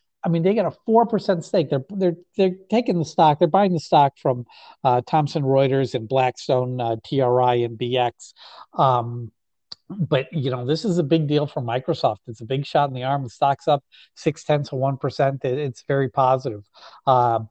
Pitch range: 130-155 Hz